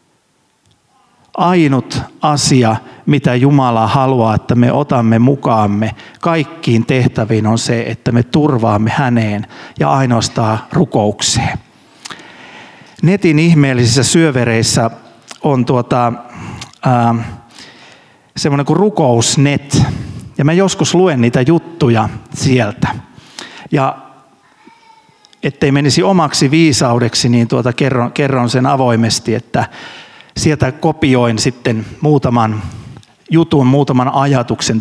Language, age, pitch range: Finnish, 50-69, 120-155 Hz